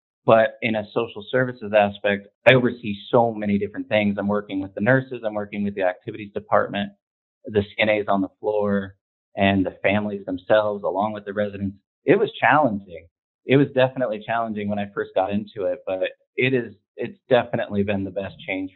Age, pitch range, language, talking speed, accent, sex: 30-49, 100-120 Hz, English, 180 wpm, American, male